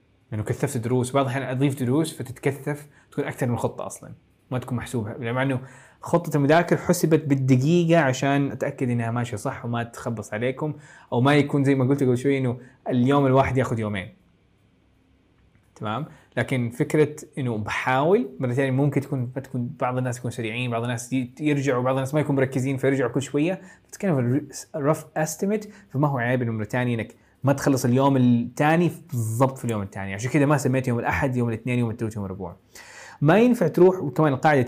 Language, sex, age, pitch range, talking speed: Arabic, male, 20-39, 120-155 Hz, 185 wpm